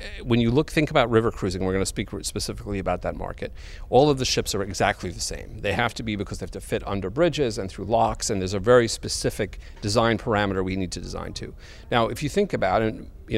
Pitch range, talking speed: 95-125 Hz, 250 wpm